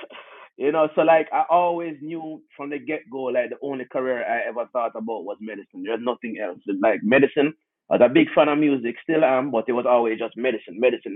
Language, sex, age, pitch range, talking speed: English, male, 30-49, 125-155 Hz, 220 wpm